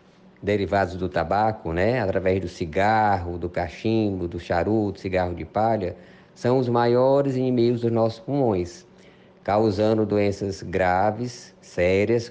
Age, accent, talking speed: 20-39, Brazilian, 120 wpm